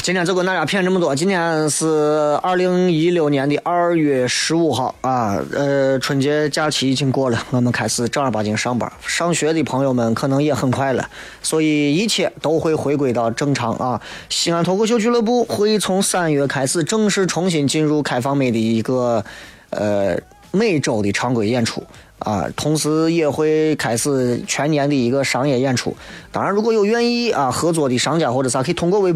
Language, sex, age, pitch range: Chinese, male, 20-39, 130-170 Hz